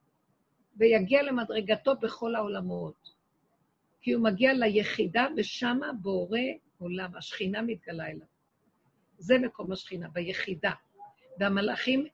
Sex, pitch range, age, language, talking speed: female, 185-240 Hz, 50-69, Hebrew, 95 wpm